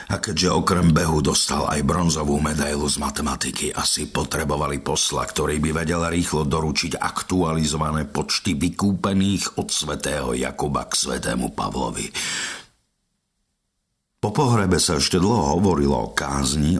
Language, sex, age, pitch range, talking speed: Slovak, male, 50-69, 70-90 Hz, 125 wpm